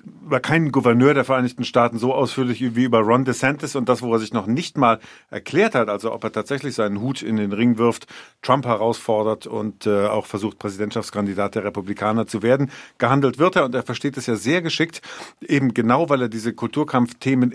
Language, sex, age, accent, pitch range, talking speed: German, male, 50-69, German, 110-130 Hz, 200 wpm